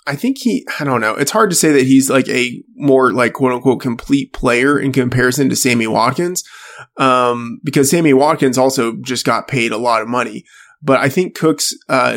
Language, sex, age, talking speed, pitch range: English, male, 20-39, 205 wpm, 125-140 Hz